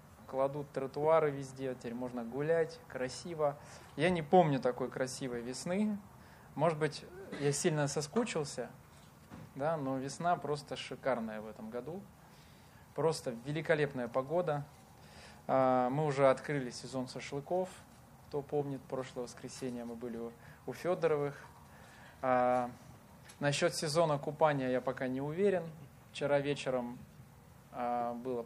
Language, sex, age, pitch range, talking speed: Russian, male, 20-39, 125-150 Hz, 110 wpm